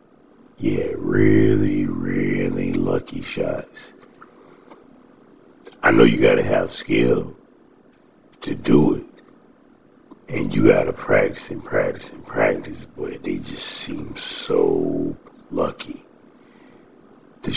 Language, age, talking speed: English, 60-79, 100 wpm